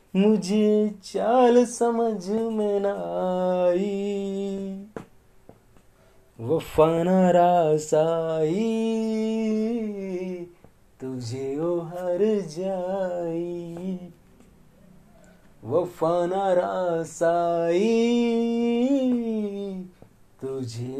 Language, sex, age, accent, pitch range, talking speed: Hindi, male, 30-49, native, 170-210 Hz, 45 wpm